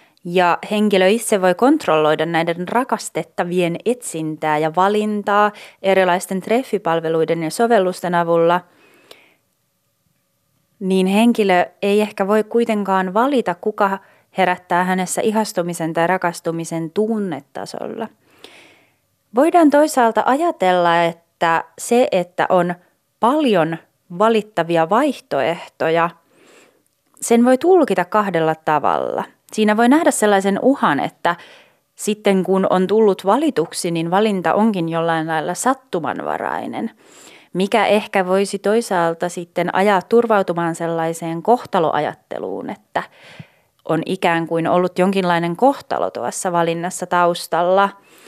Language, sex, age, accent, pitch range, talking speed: Finnish, female, 30-49, native, 170-220 Hz, 100 wpm